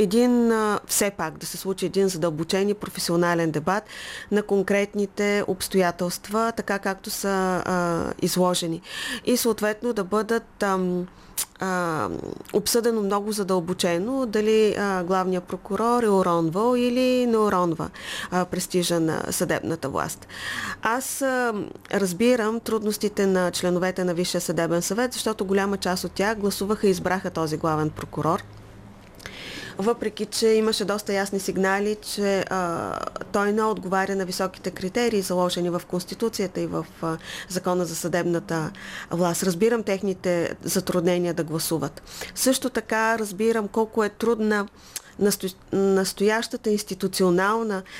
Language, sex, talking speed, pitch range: Bulgarian, female, 125 wpm, 180-215 Hz